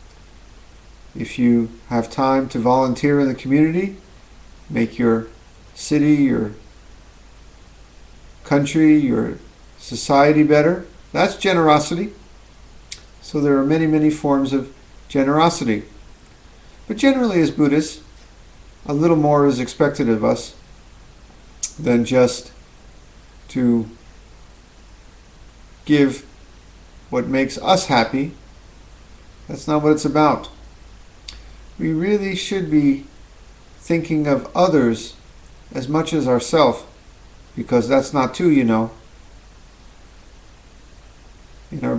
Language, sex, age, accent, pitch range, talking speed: English, male, 50-69, American, 110-155 Hz, 100 wpm